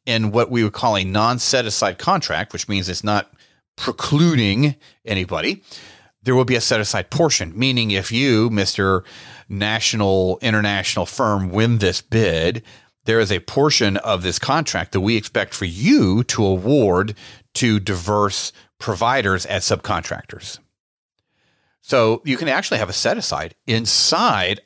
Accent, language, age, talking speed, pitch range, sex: American, English, 40-59, 140 wpm, 105-135 Hz, male